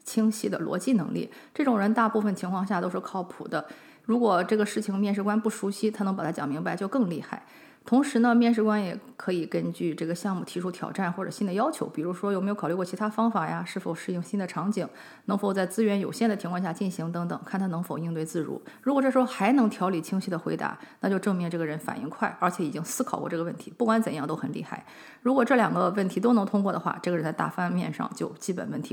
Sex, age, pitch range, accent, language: female, 30-49, 180-225 Hz, Chinese, English